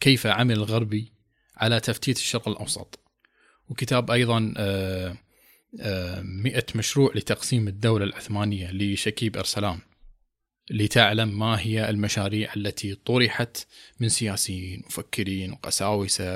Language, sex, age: Arabic, male, 20-39